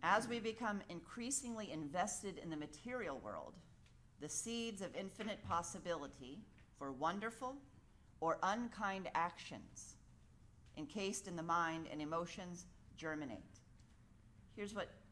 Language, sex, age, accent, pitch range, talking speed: English, female, 40-59, American, 140-180 Hz, 110 wpm